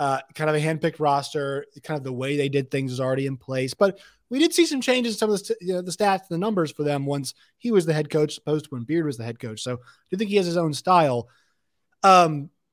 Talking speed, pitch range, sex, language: 290 wpm, 140-180 Hz, male, English